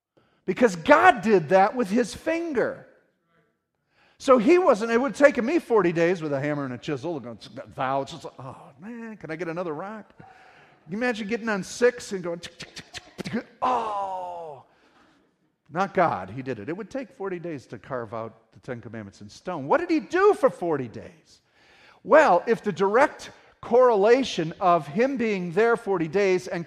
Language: English